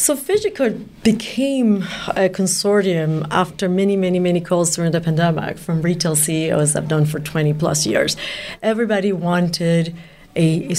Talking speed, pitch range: 150 wpm, 170-215 Hz